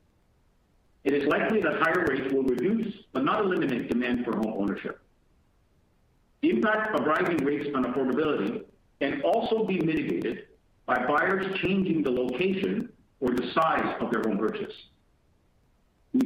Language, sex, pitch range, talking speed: English, male, 125-175 Hz, 145 wpm